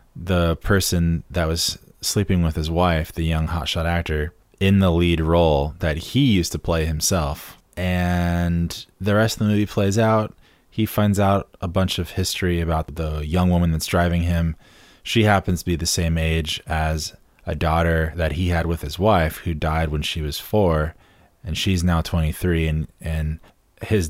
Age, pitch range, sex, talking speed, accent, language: 20-39, 80-90 Hz, male, 180 wpm, American, English